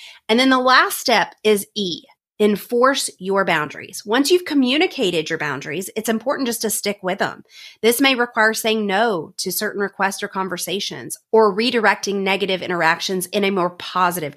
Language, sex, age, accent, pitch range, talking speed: English, female, 30-49, American, 180-220 Hz, 165 wpm